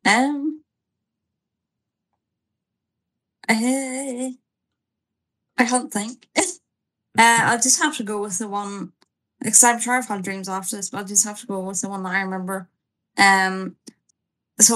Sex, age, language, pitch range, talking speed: female, 10-29, English, 200-240 Hz, 145 wpm